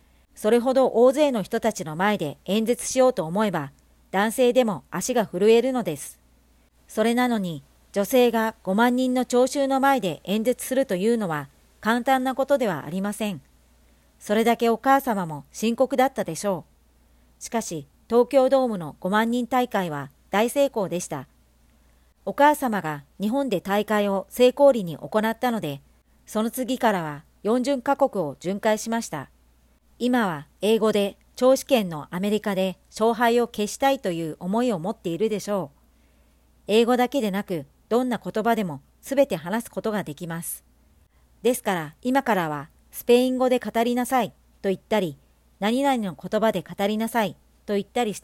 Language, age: Japanese, 40-59